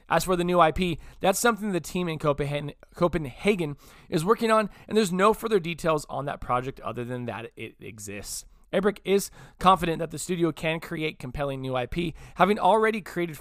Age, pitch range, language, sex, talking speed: 20-39, 135-195 Hz, English, male, 185 wpm